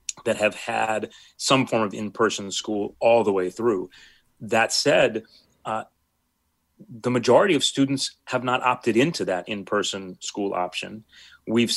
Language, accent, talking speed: English, American, 145 wpm